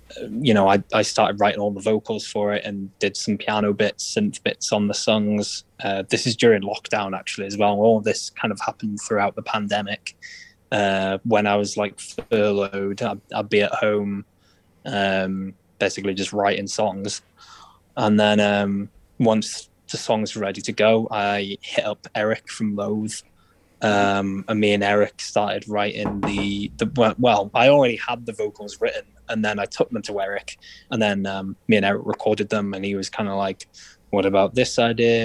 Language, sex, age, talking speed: English, male, 20-39, 190 wpm